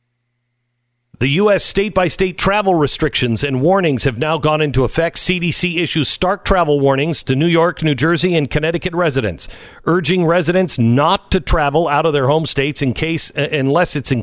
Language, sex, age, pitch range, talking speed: English, male, 50-69, 130-170 Hz, 170 wpm